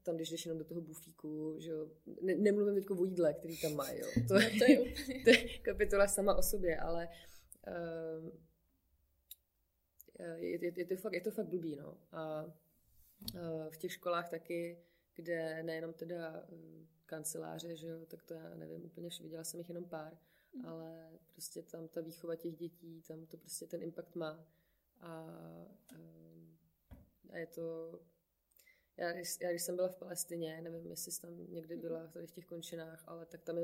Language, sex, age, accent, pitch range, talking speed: Czech, female, 20-39, native, 155-170 Hz, 170 wpm